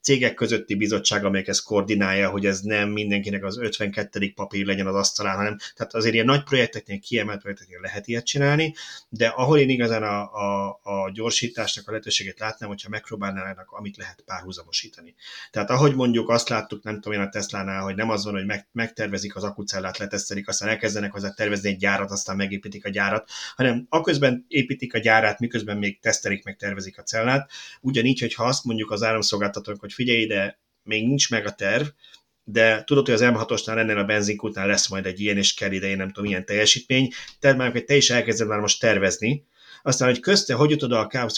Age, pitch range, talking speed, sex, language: 30-49, 100-125 Hz, 195 wpm, male, Hungarian